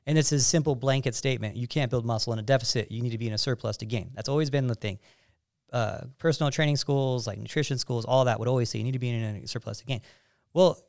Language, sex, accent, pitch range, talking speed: English, male, American, 115-145 Hz, 270 wpm